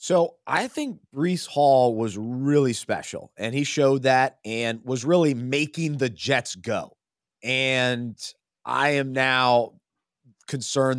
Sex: male